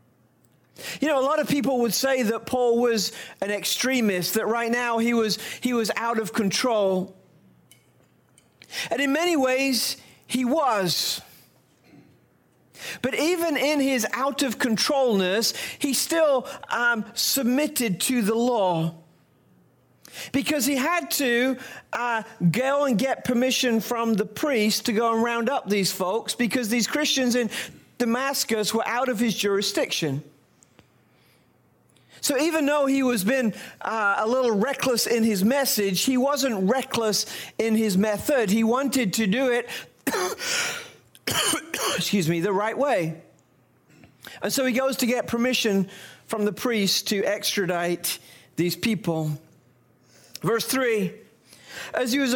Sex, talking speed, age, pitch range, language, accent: male, 135 wpm, 40-59, 200-260 Hz, English, British